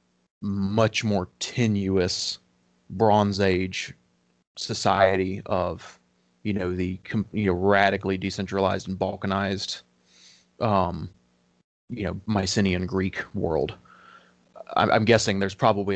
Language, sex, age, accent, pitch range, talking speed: English, male, 30-49, American, 95-110 Hz, 100 wpm